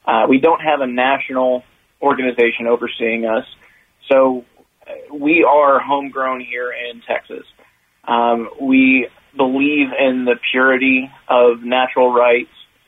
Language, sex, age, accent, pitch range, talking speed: English, male, 30-49, American, 120-130 Hz, 115 wpm